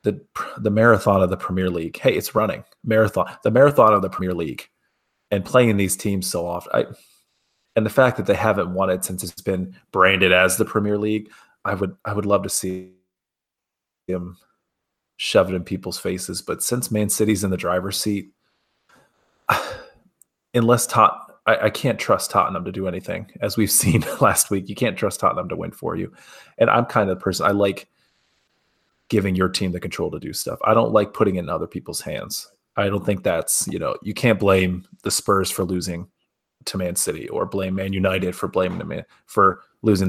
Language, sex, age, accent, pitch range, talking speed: English, male, 30-49, American, 95-105 Hz, 200 wpm